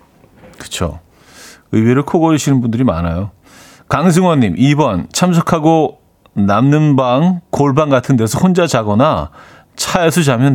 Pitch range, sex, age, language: 110-150 Hz, male, 40-59, Korean